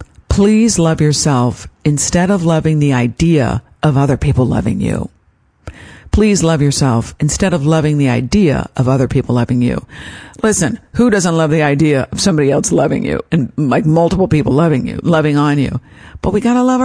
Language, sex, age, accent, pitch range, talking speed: English, female, 50-69, American, 135-185 Hz, 180 wpm